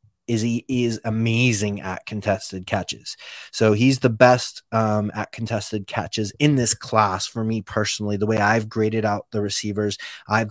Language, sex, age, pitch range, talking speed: English, male, 20-39, 105-120 Hz, 165 wpm